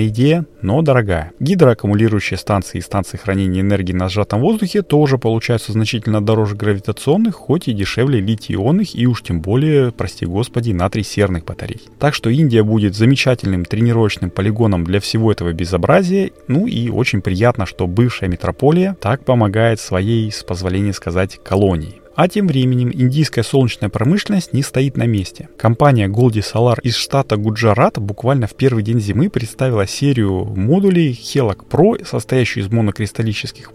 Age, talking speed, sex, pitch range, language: 30-49, 150 wpm, male, 100-130 Hz, Russian